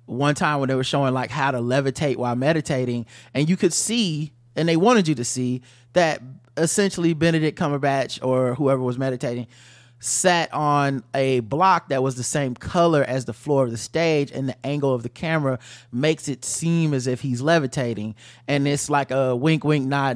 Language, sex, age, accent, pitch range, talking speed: English, male, 30-49, American, 125-155 Hz, 195 wpm